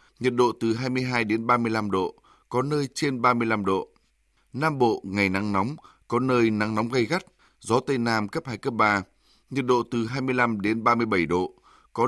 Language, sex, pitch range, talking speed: Vietnamese, male, 105-130 Hz, 190 wpm